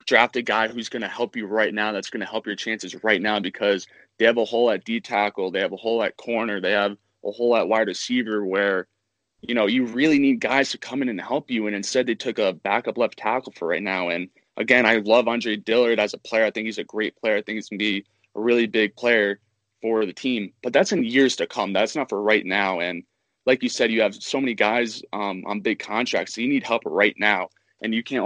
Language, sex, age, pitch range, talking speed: English, male, 20-39, 105-120 Hz, 265 wpm